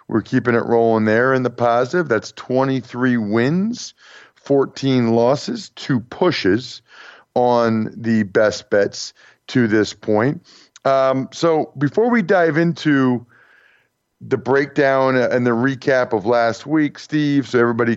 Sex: male